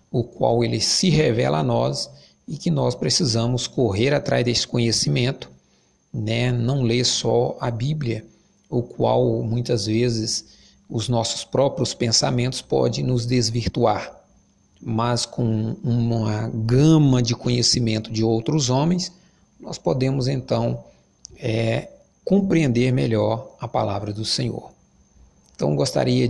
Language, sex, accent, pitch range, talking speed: Portuguese, male, Brazilian, 110-130 Hz, 120 wpm